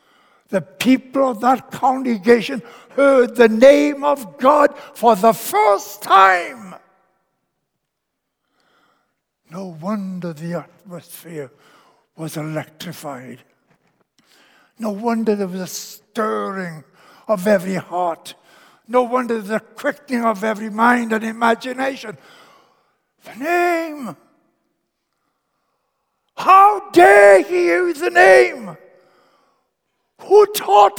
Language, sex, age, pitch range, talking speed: English, male, 60-79, 150-235 Hz, 95 wpm